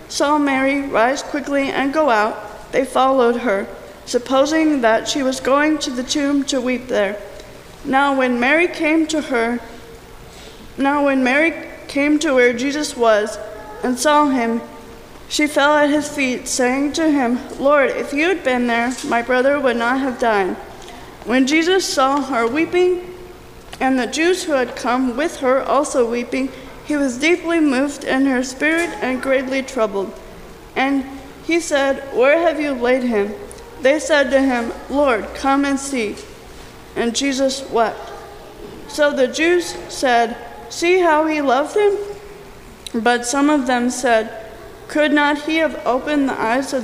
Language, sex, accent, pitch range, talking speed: English, female, American, 245-300 Hz, 160 wpm